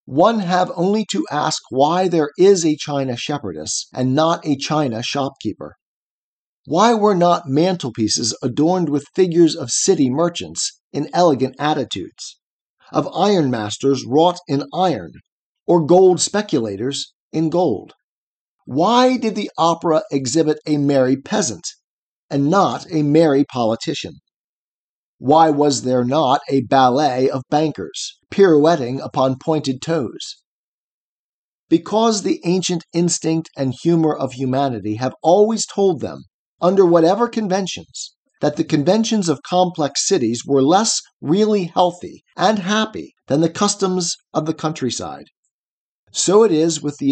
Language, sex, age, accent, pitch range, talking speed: English, male, 40-59, American, 135-180 Hz, 130 wpm